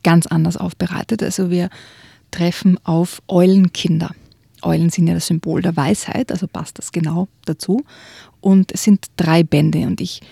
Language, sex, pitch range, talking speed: German, female, 170-200 Hz, 155 wpm